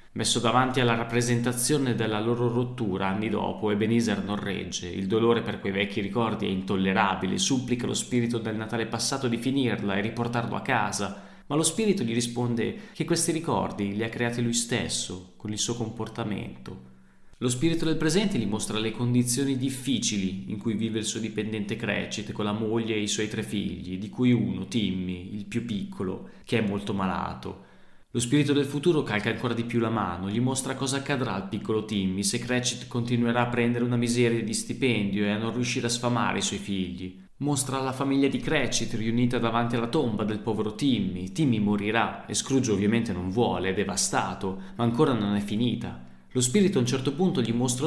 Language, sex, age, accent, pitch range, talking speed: Italian, male, 20-39, native, 100-125 Hz, 190 wpm